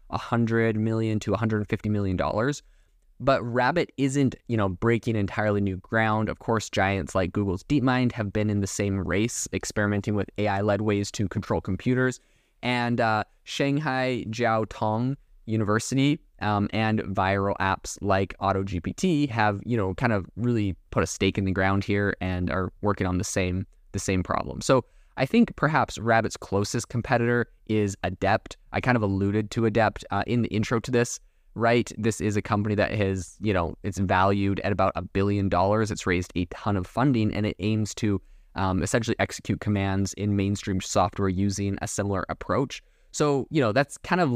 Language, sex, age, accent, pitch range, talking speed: English, male, 20-39, American, 95-115 Hz, 180 wpm